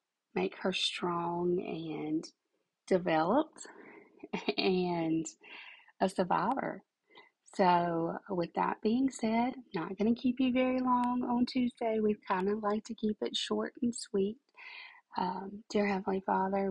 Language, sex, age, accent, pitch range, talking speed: English, female, 30-49, American, 170-215 Hz, 130 wpm